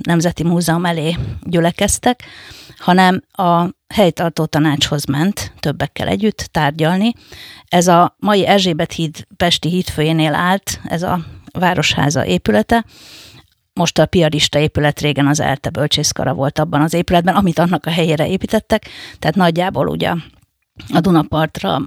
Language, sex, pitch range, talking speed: Hungarian, female, 150-180 Hz, 125 wpm